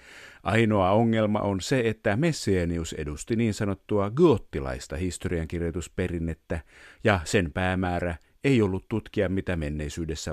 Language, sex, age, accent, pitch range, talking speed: Finnish, male, 50-69, native, 85-115 Hz, 110 wpm